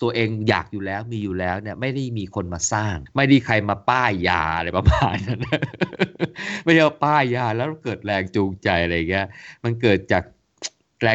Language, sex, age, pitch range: Thai, male, 20-39, 85-110 Hz